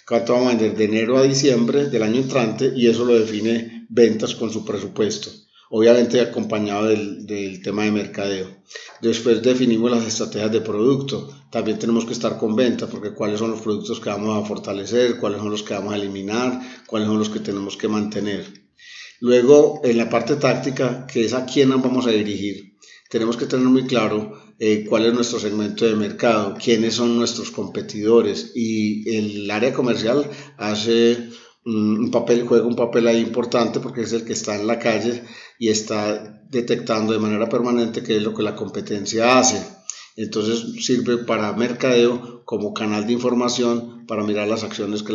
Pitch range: 105-120 Hz